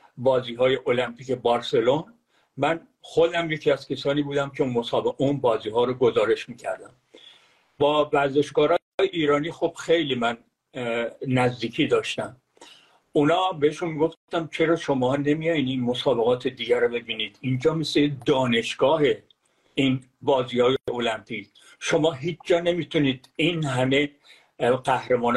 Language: English